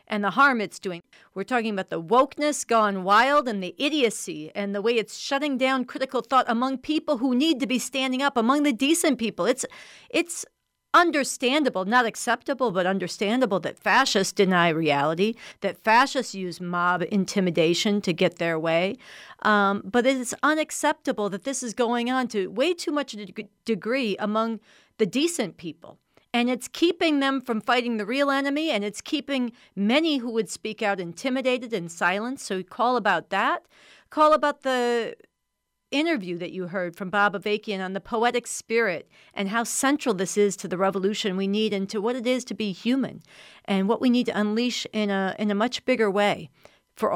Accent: American